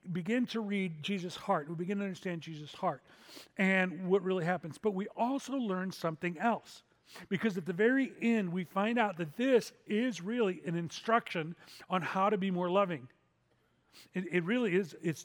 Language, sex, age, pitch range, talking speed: English, male, 40-59, 165-200 Hz, 180 wpm